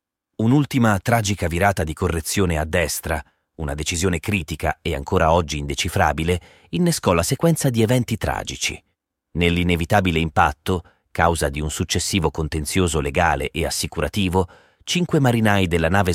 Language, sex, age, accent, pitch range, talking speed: Italian, male, 30-49, native, 80-105 Hz, 125 wpm